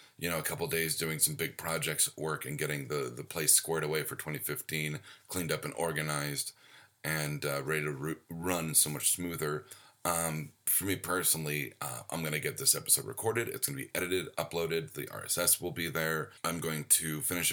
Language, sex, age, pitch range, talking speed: English, male, 30-49, 75-85 Hz, 200 wpm